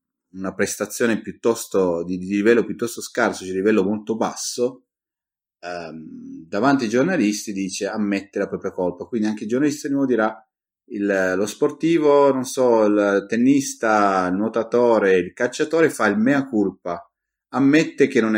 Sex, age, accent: male, 30-49, native